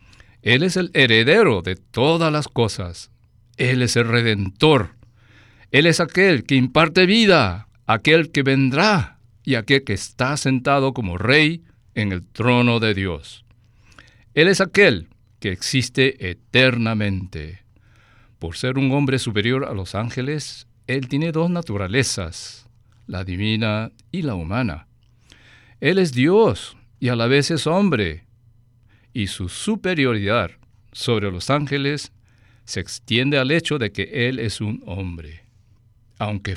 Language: Spanish